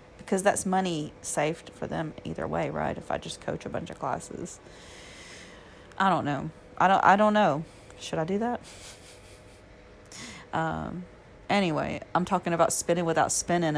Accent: American